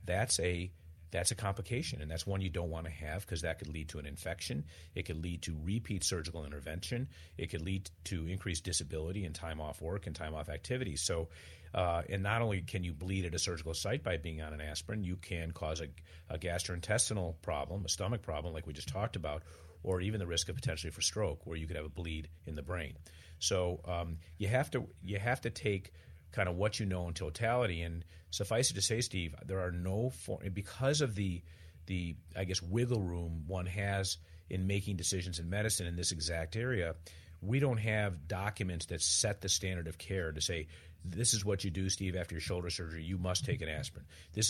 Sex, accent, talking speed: male, American, 220 wpm